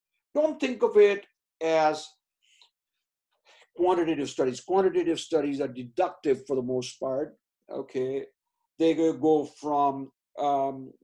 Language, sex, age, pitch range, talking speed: English, male, 60-79, 150-240 Hz, 110 wpm